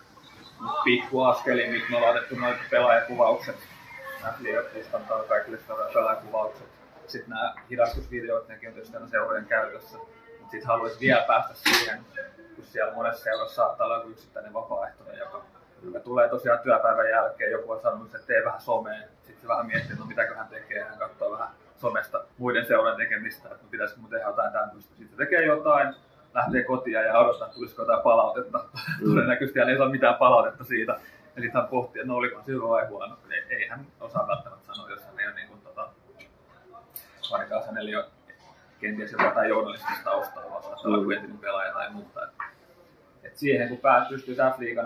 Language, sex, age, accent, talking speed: Finnish, male, 20-39, native, 170 wpm